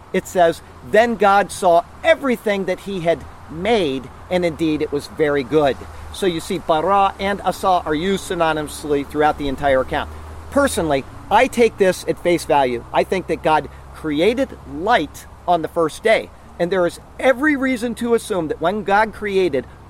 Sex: male